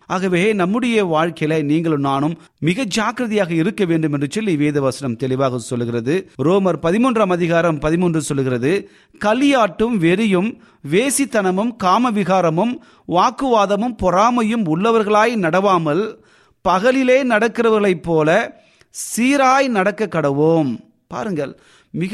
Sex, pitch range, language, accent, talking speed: male, 150-205 Hz, Tamil, native, 80 wpm